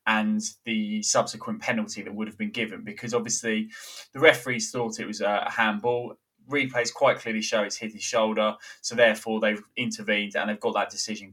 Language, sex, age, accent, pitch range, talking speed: English, male, 20-39, British, 105-130 Hz, 185 wpm